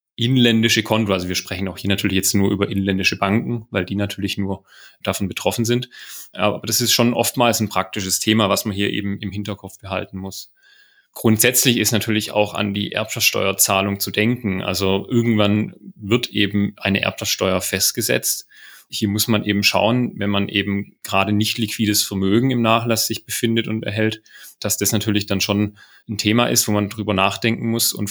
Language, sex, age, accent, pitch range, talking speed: German, male, 30-49, German, 100-110 Hz, 180 wpm